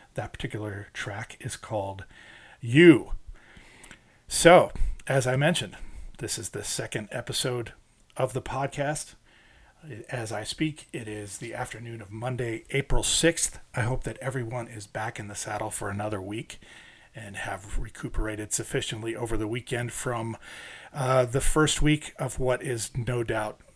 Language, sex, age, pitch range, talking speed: English, male, 40-59, 110-140 Hz, 145 wpm